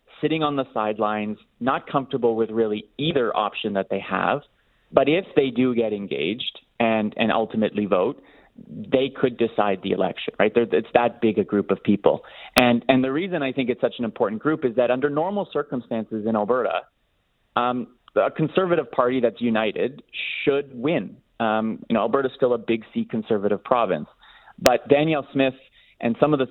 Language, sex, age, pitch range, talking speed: English, male, 30-49, 110-135 Hz, 180 wpm